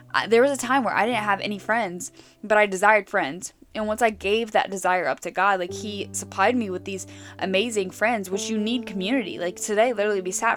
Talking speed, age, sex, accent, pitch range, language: 225 wpm, 10-29, female, American, 180-210 Hz, English